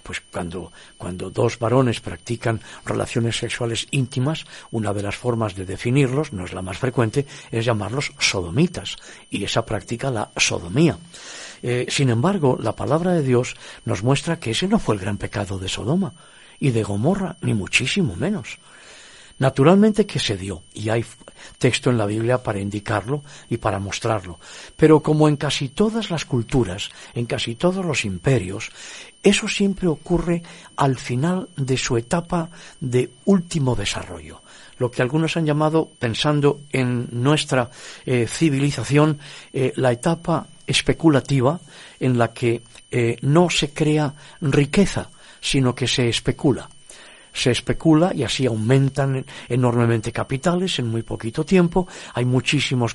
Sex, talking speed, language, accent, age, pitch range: male, 145 wpm, Spanish, Spanish, 50-69, 115-155 Hz